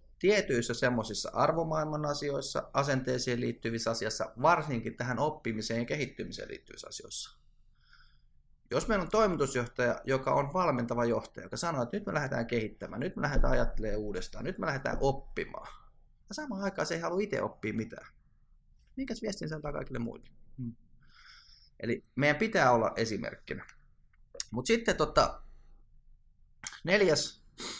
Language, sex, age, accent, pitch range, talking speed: Finnish, male, 30-49, native, 110-150 Hz, 135 wpm